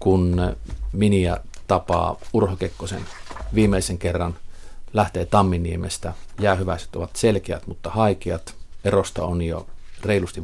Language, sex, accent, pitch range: Finnish, male, native, 90-100 Hz